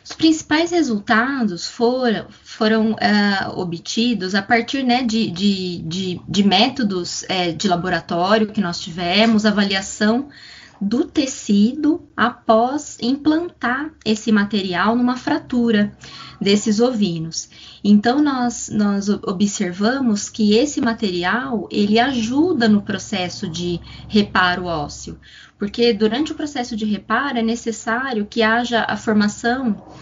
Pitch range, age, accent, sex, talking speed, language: 205-275 Hz, 20-39, Brazilian, female, 110 wpm, Portuguese